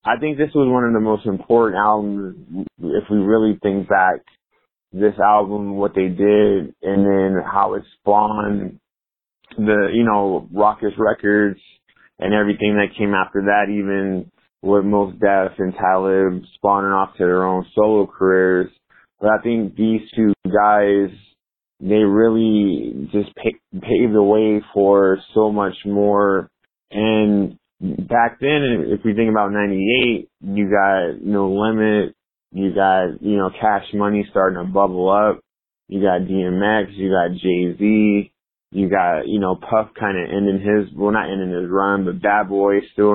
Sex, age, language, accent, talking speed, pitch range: male, 20-39, English, American, 155 wpm, 95-105 Hz